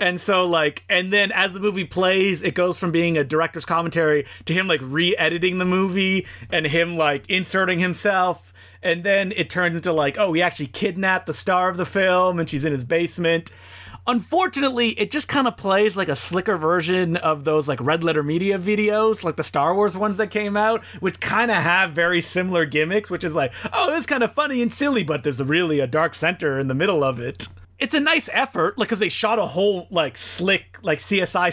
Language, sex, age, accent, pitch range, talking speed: English, male, 30-49, American, 150-195 Hz, 215 wpm